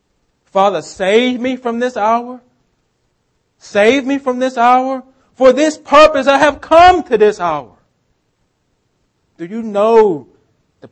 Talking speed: 130 wpm